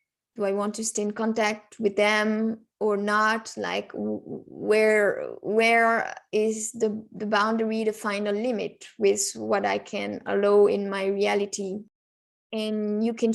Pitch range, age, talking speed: 205-225 Hz, 20-39, 145 wpm